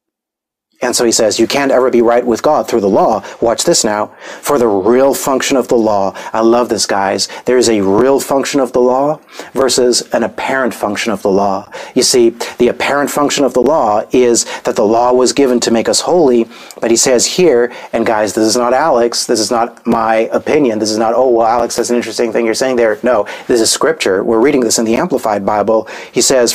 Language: English